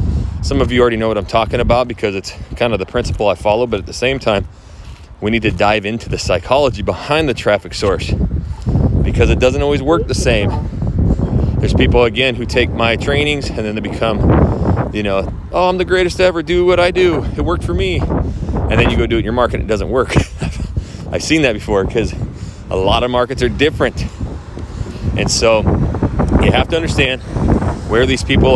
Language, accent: English, American